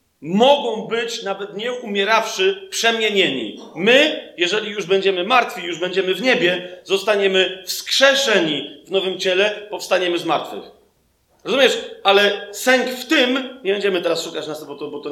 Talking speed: 140 wpm